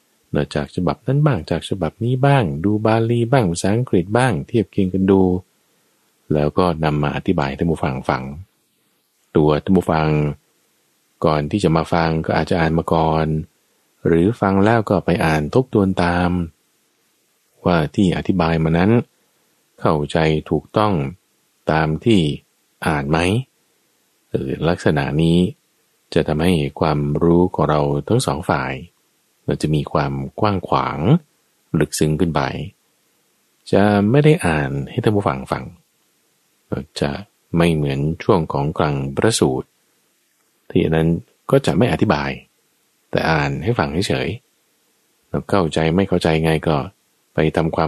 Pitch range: 75-100 Hz